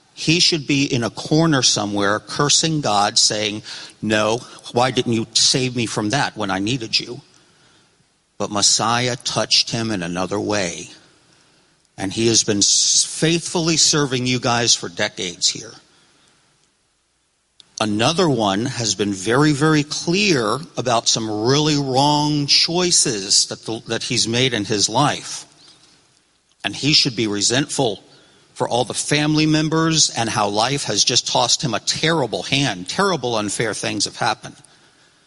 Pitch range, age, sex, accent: 110-155 Hz, 50-69, male, American